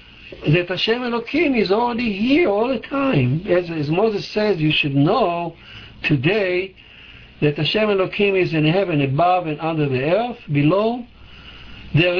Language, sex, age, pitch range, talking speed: English, male, 60-79, 145-200 Hz, 150 wpm